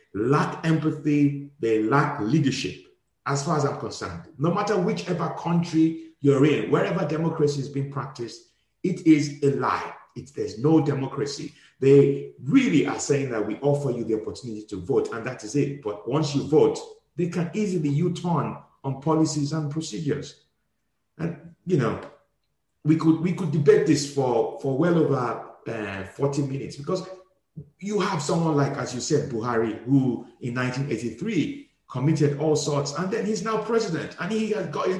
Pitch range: 140-185 Hz